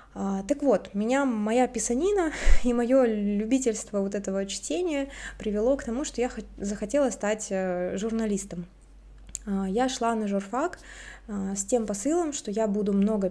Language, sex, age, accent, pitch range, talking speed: Russian, female, 20-39, native, 200-245 Hz, 135 wpm